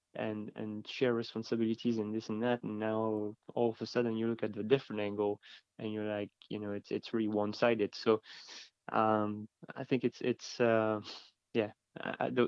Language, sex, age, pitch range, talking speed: English, male, 20-39, 105-120 Hz, 185 wpm